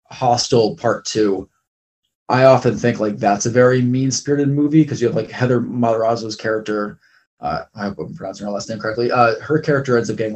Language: English